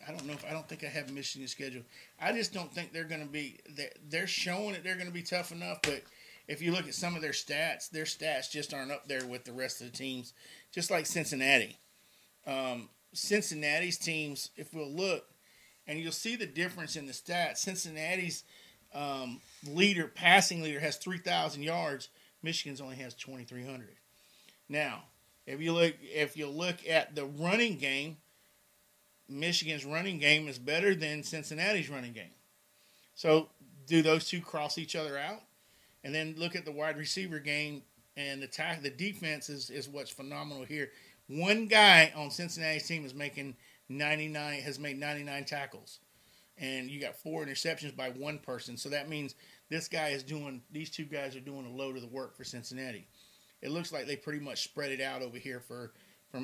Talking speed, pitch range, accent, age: 195 wpm, 135-165 Hz, American, 50-69